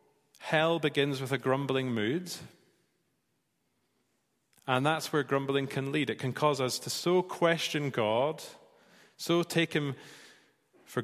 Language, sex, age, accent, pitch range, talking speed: English, male, 30-49, British, 125-155 Hz, 130 wpm